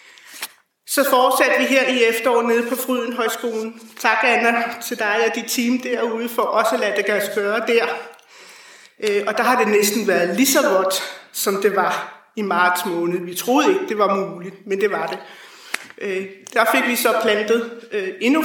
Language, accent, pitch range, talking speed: Danish, native, 195-240 Hz, 175 wpm